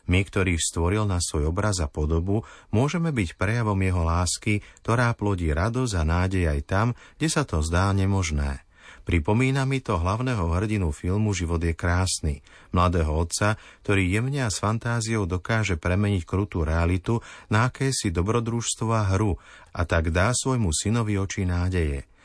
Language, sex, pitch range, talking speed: Slovak, male, 85-110 Hz, 155 wpm